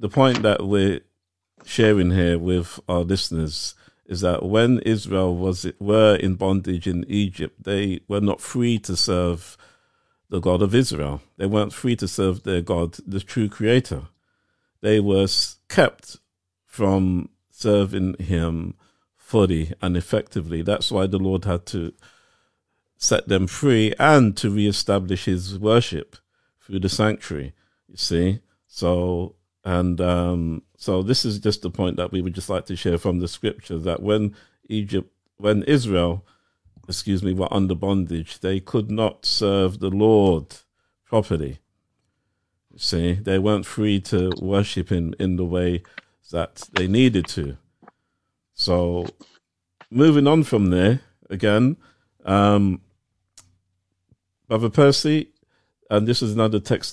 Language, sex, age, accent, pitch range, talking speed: English, male, 50-69, British, 90-105 Hz, 140 wpm